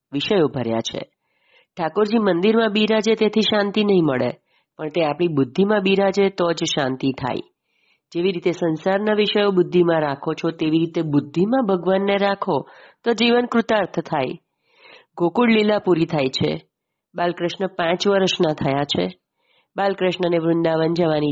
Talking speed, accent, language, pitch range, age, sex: 135 wpm, native, Gujarati, 145-190 Hz, 30-49, female